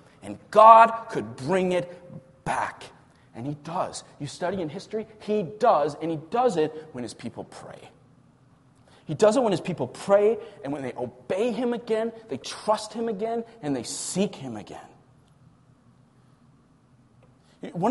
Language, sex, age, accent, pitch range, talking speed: English, male, 30-49, American, 125-185 Hz, 155 wpm